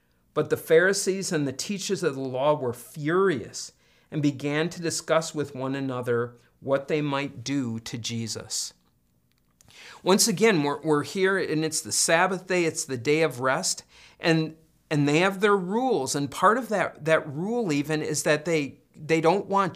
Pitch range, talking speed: 140-180 Hz, 175 wpm